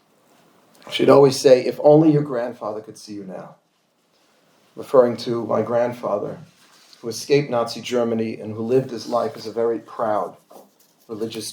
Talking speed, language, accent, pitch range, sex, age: 150 wpm, English, American, 115-145 Hz, male, 40-59